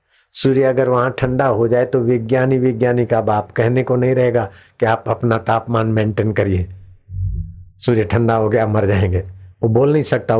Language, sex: Hindi, male